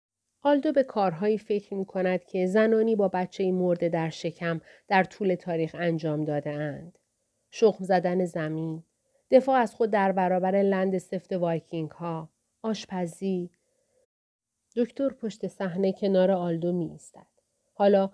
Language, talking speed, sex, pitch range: Persian, 125 wpm, female, 180-225 Hz